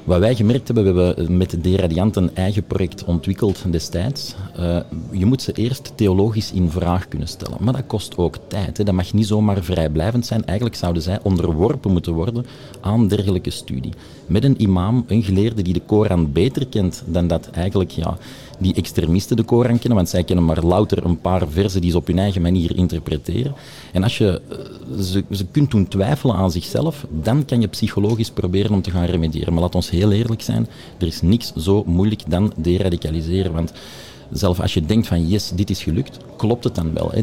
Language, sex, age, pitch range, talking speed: Dutch, male, 40-59, 90-110 Hz, 205 wpm